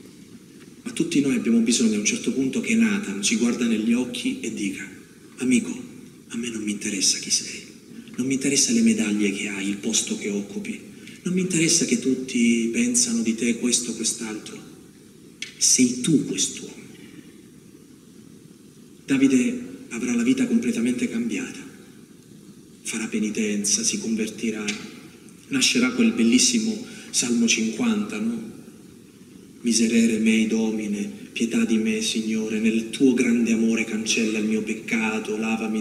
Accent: native